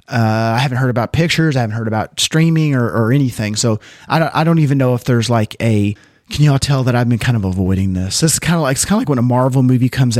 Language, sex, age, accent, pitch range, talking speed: English, male, 30-49, American, 115-145 Hz, 290 wpm